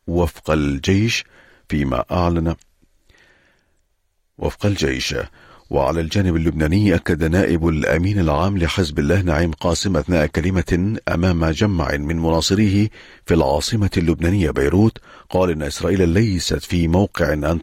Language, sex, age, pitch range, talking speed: Arabic, male, 40-59, 85-95 Hz, 115 wpm